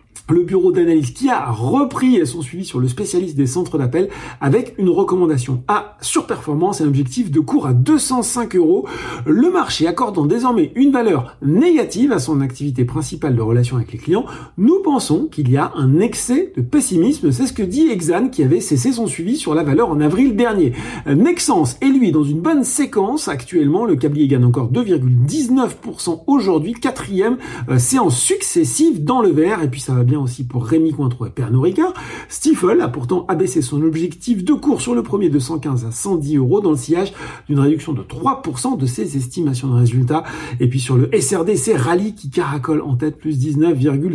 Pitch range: 135-220 Hz